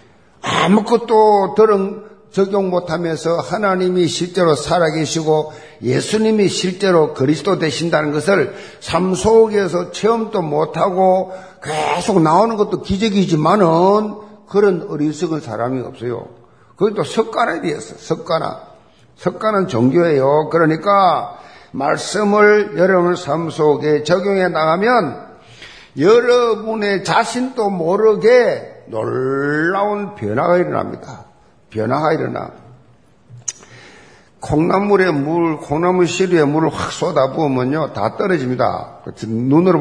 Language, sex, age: Korean, male, 50-69